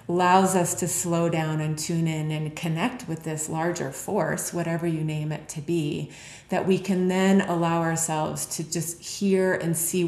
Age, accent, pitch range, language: 30-49, American, 160-175 Hz, English